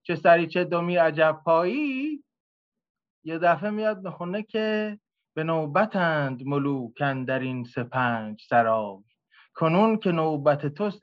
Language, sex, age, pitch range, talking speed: English, male, 20-39, 140-195 Hz, 110 wpm